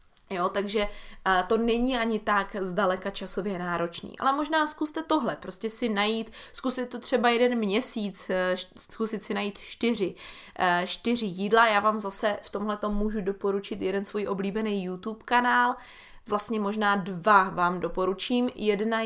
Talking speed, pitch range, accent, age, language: 140 wpm, 190-225 Hz, native, 20-39, Czech